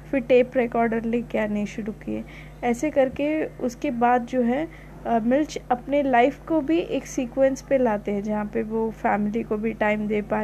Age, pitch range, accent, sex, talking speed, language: 20-39, 215-270 Hz, native, female, 195 wpm, Hindi